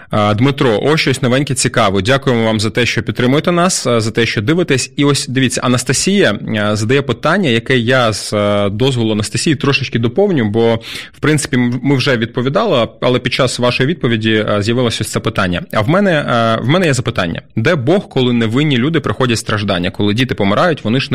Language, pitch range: Ukrainian, 110-140 Hz